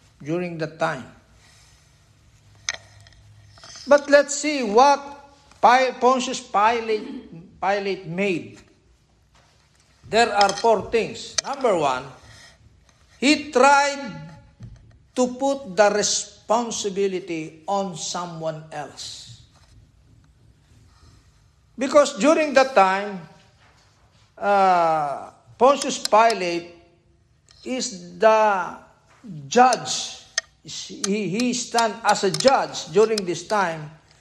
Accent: native